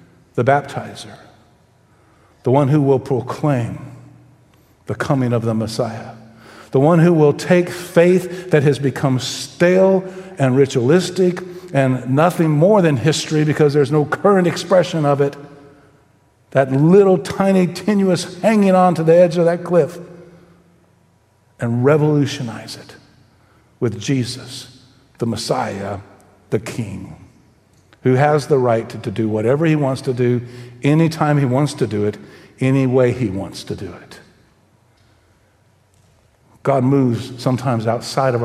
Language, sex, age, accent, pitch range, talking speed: English, male, 50-69, American, 120-165 Hz, 135 wpm